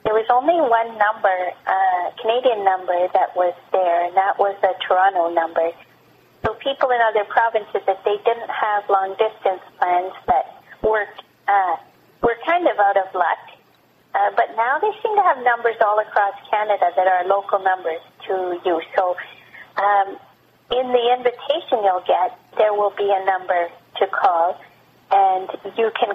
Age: 40-59